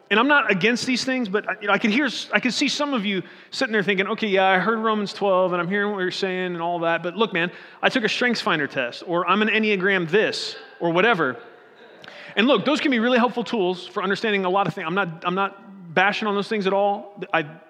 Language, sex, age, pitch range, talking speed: English, male, 30-49, 175-220 Hz, 260 wpm